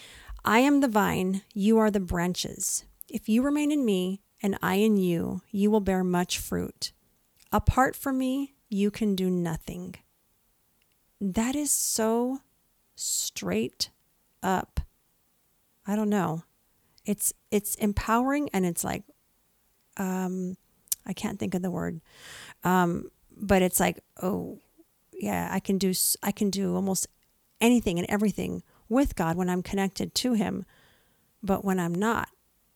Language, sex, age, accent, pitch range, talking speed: English, female, 40-59, American, 185-220 Hz, 140 wpm